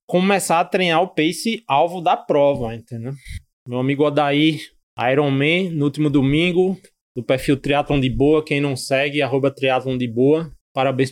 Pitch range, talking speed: 140-175 Hz, 150 wpm